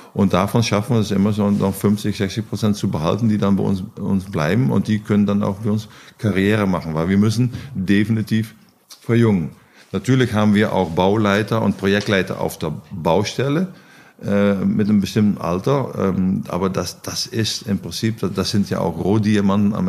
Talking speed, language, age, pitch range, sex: 180 wpm, German, 50-69, 95-105 Hz, male